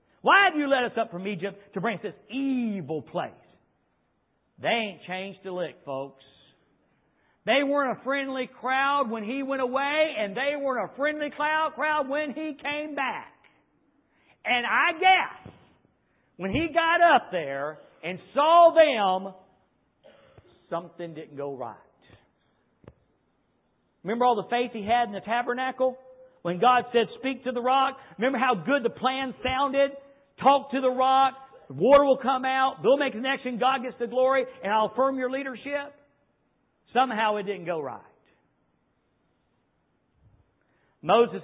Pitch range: 195-275 Hz